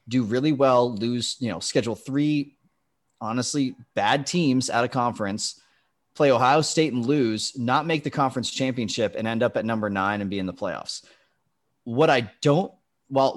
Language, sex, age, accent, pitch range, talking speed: English, male, 30-49, American, 110-140 Hz, 175 wpm